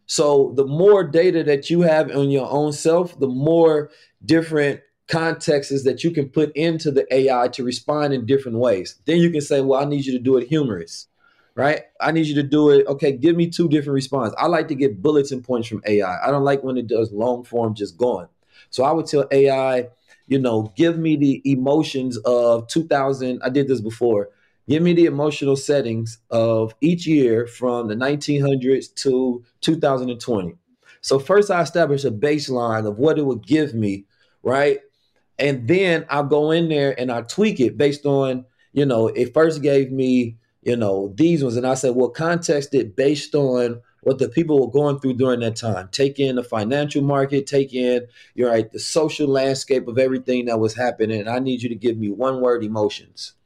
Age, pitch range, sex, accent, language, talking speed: 30-49, 125-150 Hz, male, American, English, 200 wpm